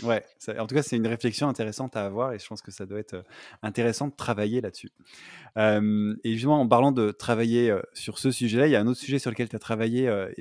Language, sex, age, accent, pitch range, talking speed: French, male, 20-39, French, 110-130 Hz, 260 wpm